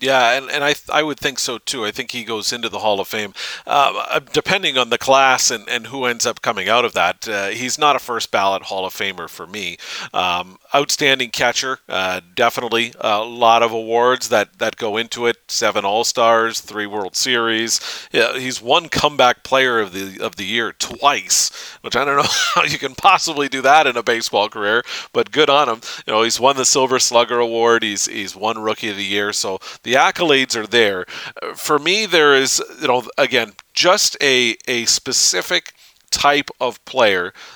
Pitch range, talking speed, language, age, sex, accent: 110-130 Hz, 205 wpm, English, 40-59, male, American